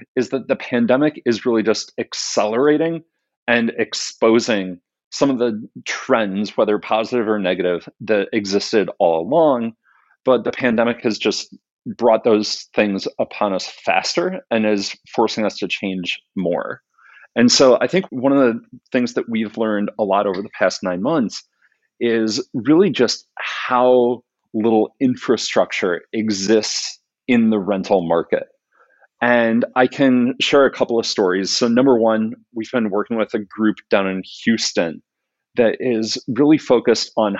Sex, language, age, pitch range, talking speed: male, English, 40-59, 105-125 Hz, 150 wpm